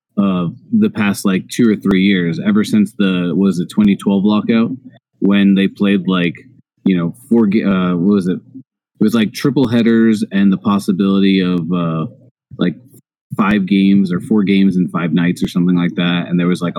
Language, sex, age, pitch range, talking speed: English, male, 30-49, 90-115 Hz, 190 wpm